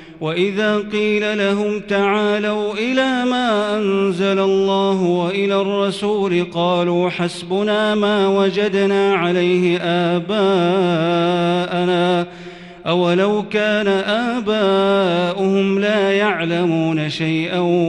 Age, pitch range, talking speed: 40-59, 175-200 Hz, 75 wpm